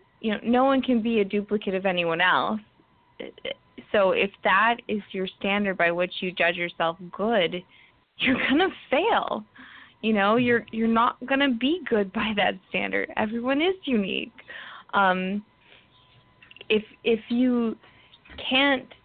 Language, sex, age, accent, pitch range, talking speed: English, female, 20-39, American, 200-255 Hz, 150 wpm